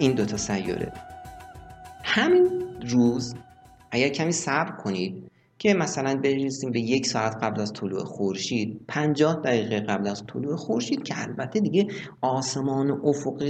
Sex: male